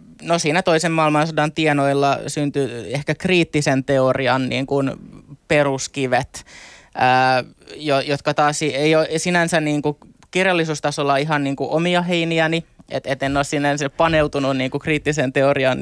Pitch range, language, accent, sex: 140-155 Hz, Finnish, native, male